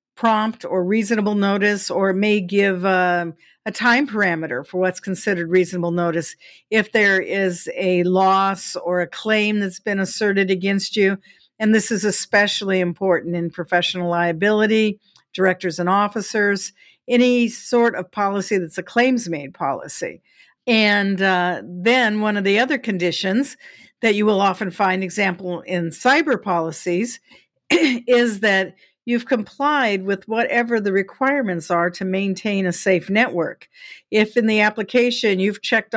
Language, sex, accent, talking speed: English, female, American, 140 wpm